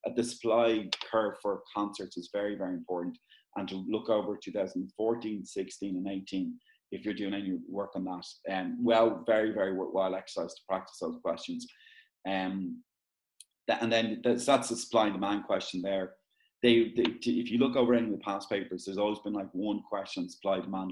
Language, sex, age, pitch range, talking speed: English, male, 30-49, 95-120 Hz, 185 wpm